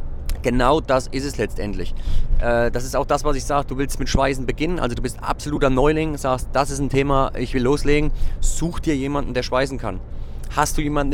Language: German